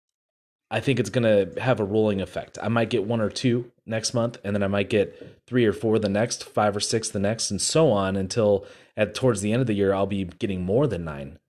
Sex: male